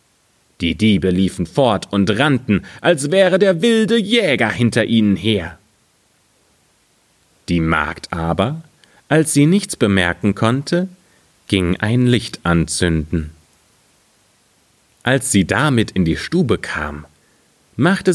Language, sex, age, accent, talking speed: German, male, 30-49, German, 110 wpm